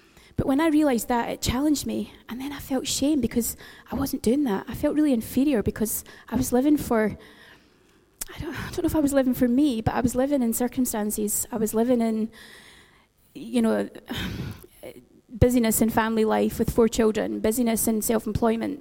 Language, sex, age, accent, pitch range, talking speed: English, female, 20-39, British, 225-275 Hz, 190 wpm